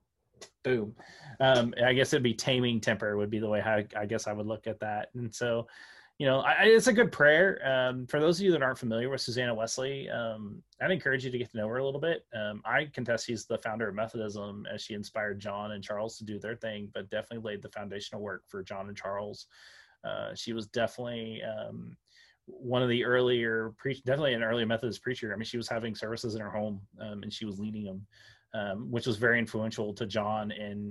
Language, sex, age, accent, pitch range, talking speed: English, male, 30-49, American, 105-120 Hz, 230 wpm